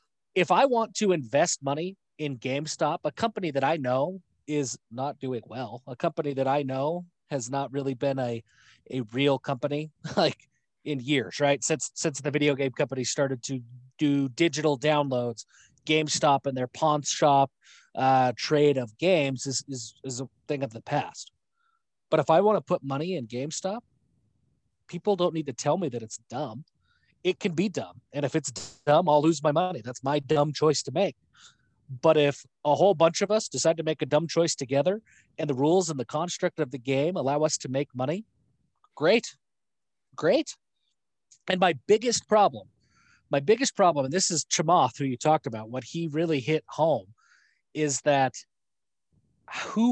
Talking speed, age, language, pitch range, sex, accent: 180 wpm, 30-49, English, 135-165 Hz, male, American